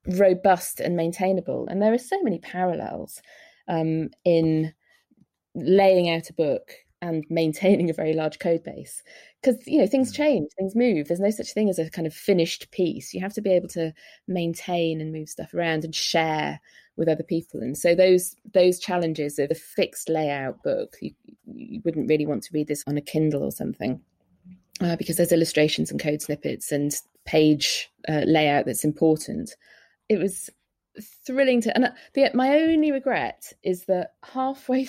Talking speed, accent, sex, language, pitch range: 175 wpm, British, female, English, 160-230 Hz